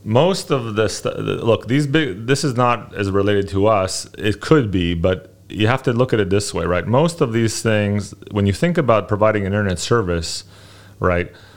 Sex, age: male, 30-49